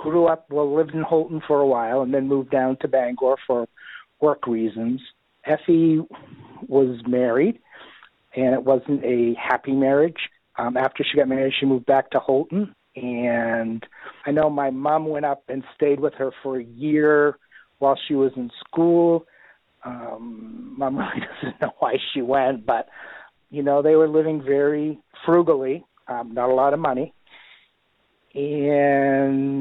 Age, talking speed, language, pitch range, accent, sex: 50-69, 160 wpm, English, 130-150 Hz, American, male